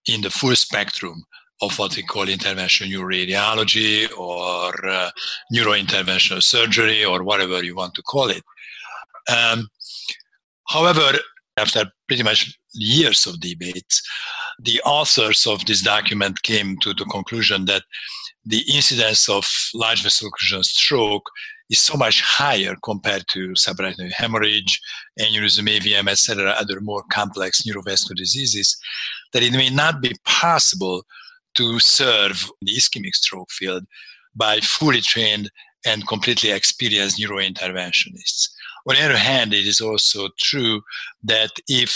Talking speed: 130 wpm